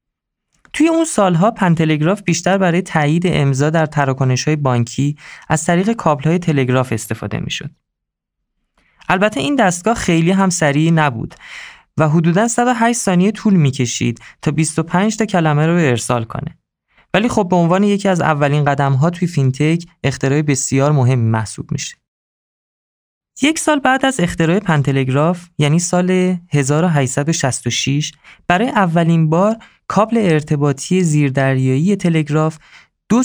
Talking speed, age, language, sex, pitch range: 130 wpm, 20-39, Persian, male, 140-190 Hz